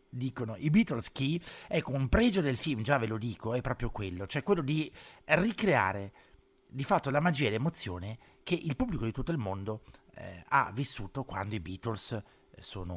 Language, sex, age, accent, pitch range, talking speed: Italian, male, 50-69, native, 100-135 Hz, 185 wpm